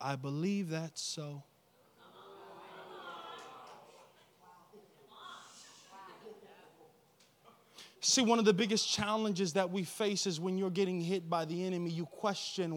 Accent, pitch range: American, 190-320 Hz